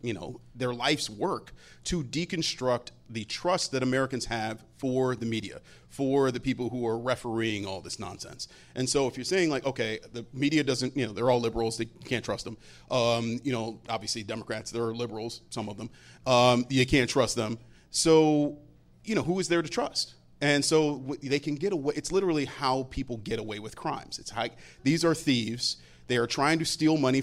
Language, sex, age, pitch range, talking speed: English, male, 30-49, 115-145 Hz, 190 wpm